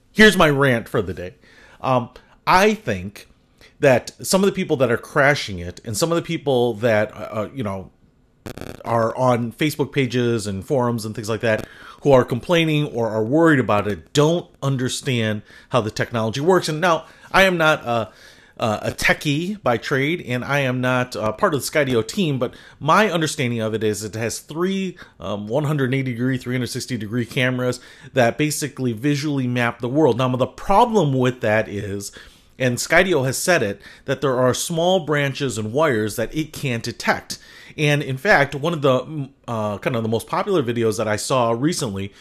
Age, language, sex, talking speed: 30-49, English, male, 190 wpm